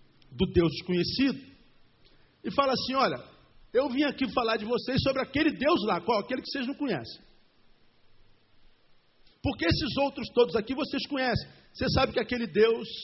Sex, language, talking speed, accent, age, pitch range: male, Portuguese, 160 wpm, Brazilian, 50-69, 185-265 Hz